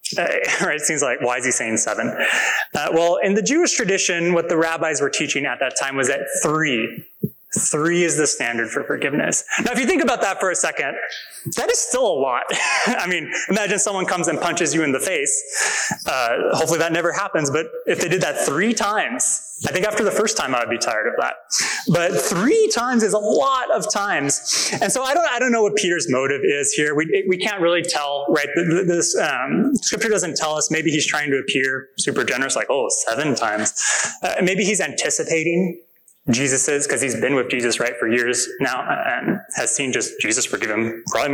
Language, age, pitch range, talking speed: English, 20-39, 155-240 Hz, 220 wpm